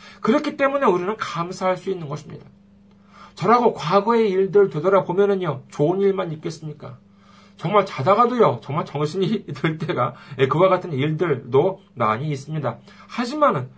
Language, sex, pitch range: Korean, male, 160-215 Hz